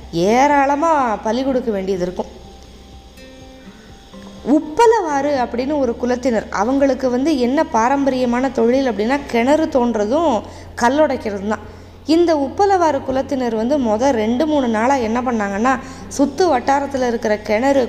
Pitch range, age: 220-290 Hz, 20-39